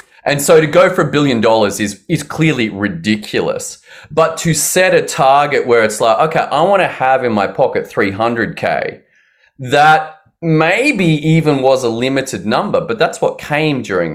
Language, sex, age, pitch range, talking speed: English, male, 30-49, 110-155 Hz, 175 wpm